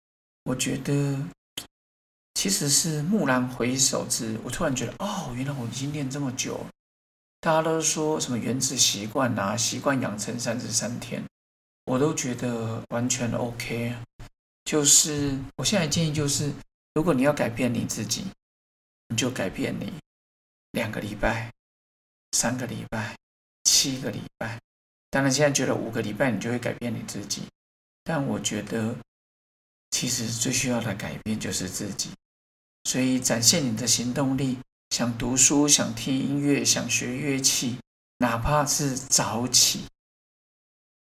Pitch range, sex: 100-140 Hz, male